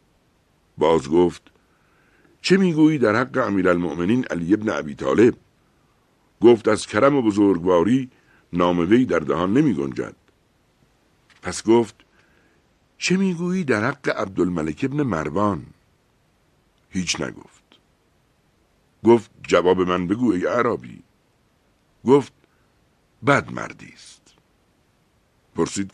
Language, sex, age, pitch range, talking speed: Persian, male, 60-79, 95-140 Hz, 95 wpm